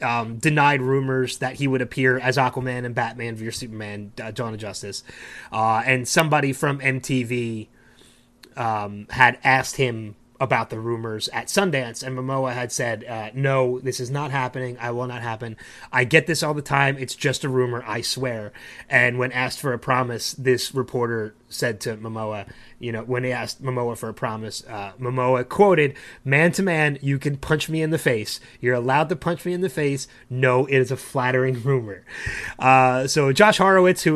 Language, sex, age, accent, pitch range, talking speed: English, male, 30-49, American, 120-145 Hz, 190 wpm